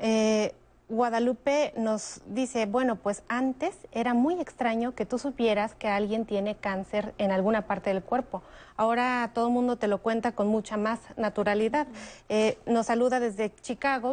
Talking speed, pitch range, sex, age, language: 160 wpm, 210-245 Hz, female, 30-49, Spanish